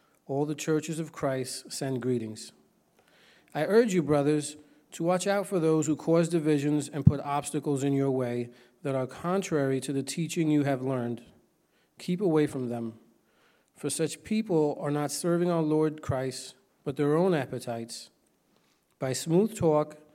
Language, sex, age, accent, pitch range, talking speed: English, male, 40-59, American, 135-165 Hz, 160 wpm